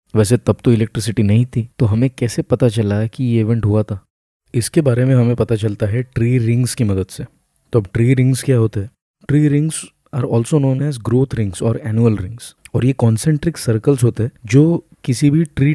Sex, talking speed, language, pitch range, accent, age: male, 205 wpm, Hindi, 110-135 Hz, native, 20-39